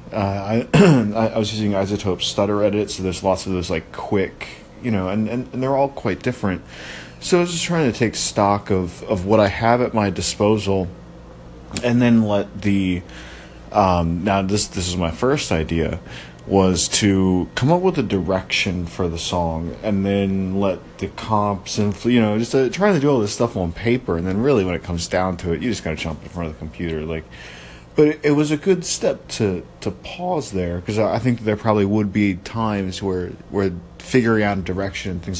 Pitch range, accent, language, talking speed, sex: 85-115 Hz, American, English, 210 wpm, male